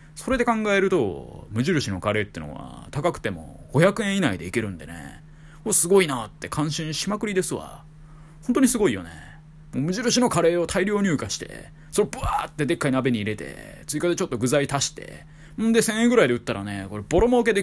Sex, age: male, 20-39